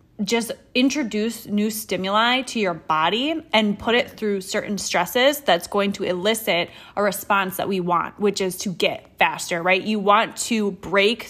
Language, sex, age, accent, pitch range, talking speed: English, female, 20-39, American, 195-240 Hz, 170 wpm